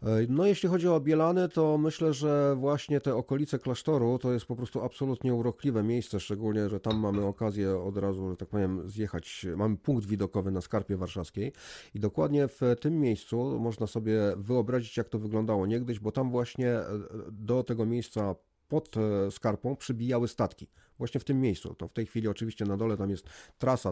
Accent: native